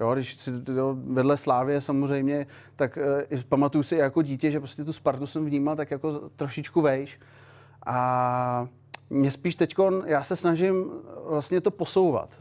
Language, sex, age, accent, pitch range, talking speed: Czech, male, 30-49, native, 140-155 Hz, 160 wpm